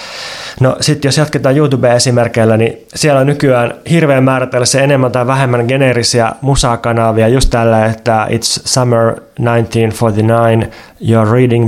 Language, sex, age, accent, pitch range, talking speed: Finnish, male, 20-39, native, 110-125 Hz, 125 wpm